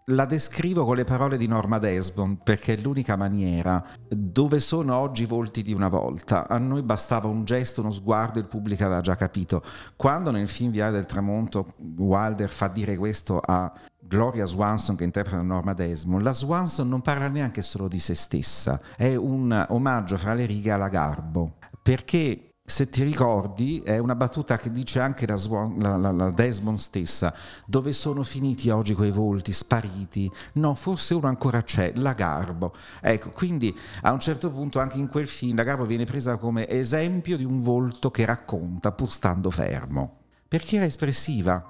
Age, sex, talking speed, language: 50-69, male, 180 wpm, Italian